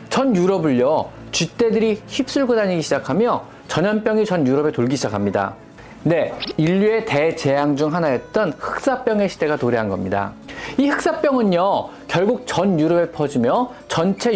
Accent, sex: native, male